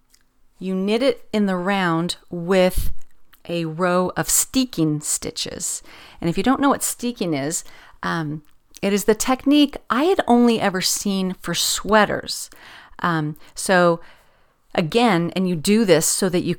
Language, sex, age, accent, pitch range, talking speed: English, female, 40-59, American, 165-210 Hz, 150 wpm